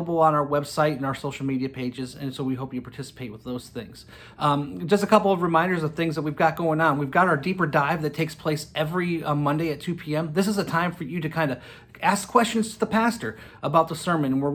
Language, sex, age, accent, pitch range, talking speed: English, male, 30-49, American, 140-165 Hz, 255 wpm